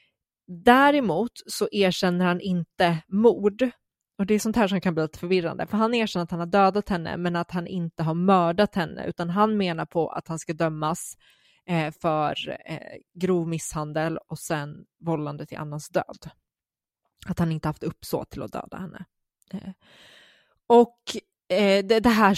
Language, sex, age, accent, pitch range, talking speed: Swedish, female, 20-39, native, 170-215 Hz, 160 wpm